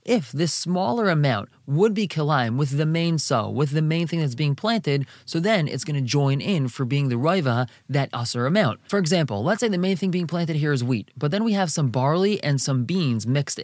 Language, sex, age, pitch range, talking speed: English, male, 20-39, 130-165 Hz, 240 wpm